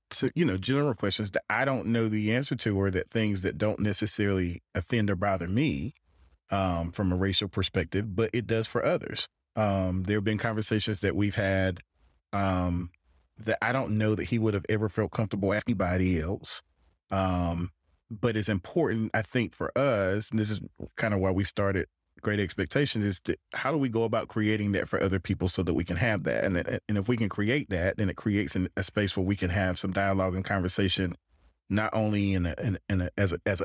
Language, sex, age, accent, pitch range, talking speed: English, male, 30-49, American, 95-110 Hz, 220 wpm